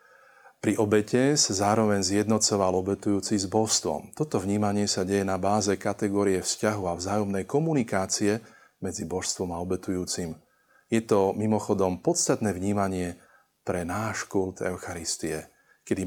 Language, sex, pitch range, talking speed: Slovak, male, 95-110 Hz, 125 wpm